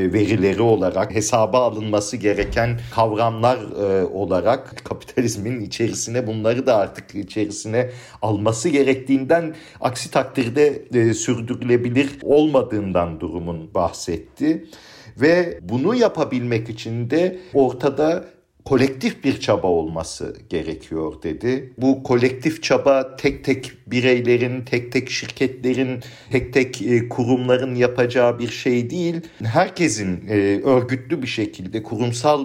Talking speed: 105 wpm